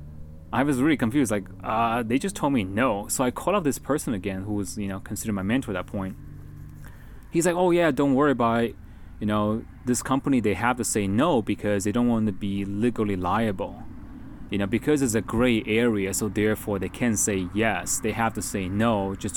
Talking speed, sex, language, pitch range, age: 220 wpm, male, English, 95-115 Hz, 20-39